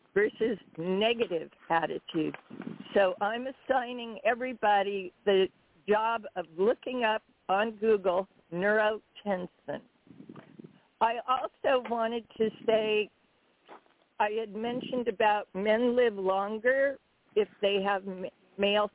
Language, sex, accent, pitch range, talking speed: English, female, American, 190-230 Hz, 100 wpm